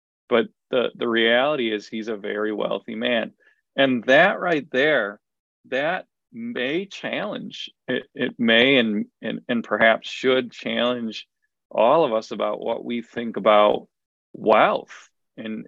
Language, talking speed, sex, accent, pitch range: English, 140 wpm, male, American, 110-130 Hz